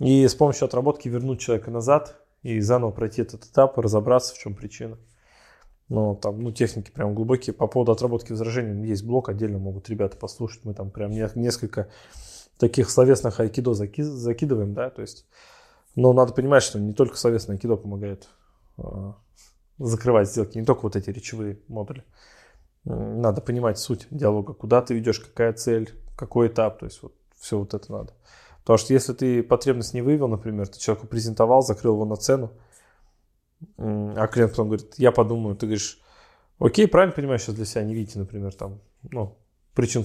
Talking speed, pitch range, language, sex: 170 wpm, 105-125 Hz, Russian, male